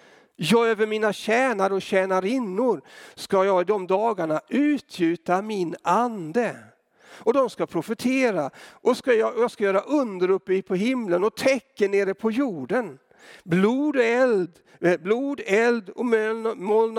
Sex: male